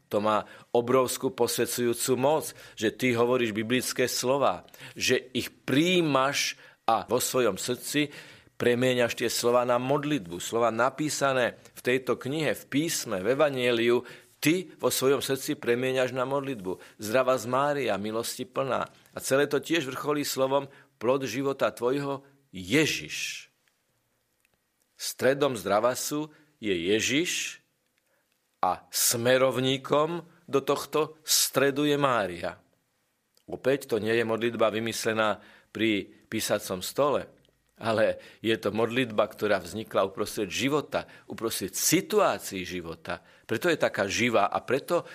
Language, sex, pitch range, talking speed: Slovak, male, 110-140 Hz, 120 wpm